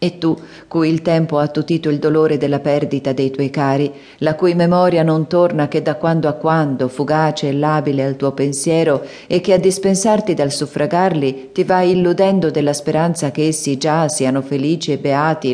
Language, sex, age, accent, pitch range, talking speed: Italian, female, 40-59, native, 145-175 Hz, 185 wpm